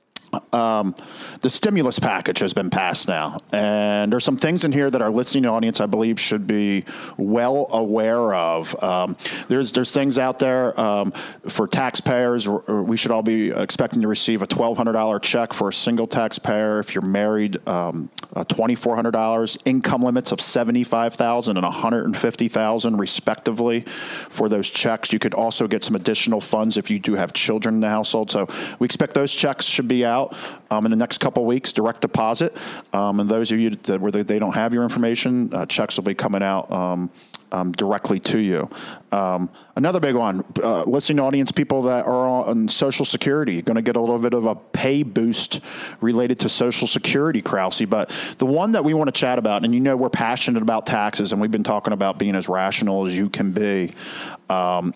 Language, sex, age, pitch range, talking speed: English, male, 40-59, 105-125 Hz, 190 wpm